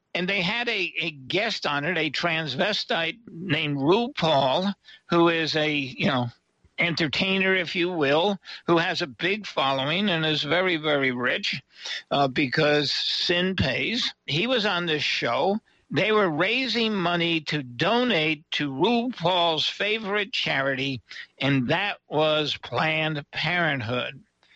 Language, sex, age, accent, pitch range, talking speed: English, male, 60-79, American, 150-190 Hz, 135 wpm